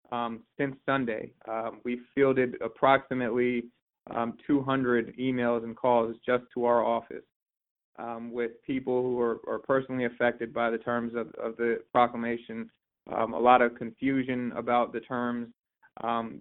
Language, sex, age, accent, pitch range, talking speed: English, male, 20-39, American, 120-130 Hz, 145 wpm